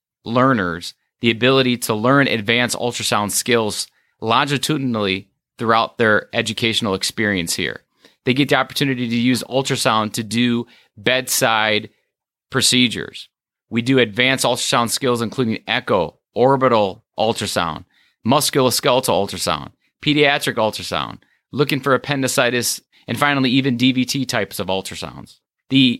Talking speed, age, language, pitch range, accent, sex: 115 wpm, 30-49, English, 110-135 Hz, American, male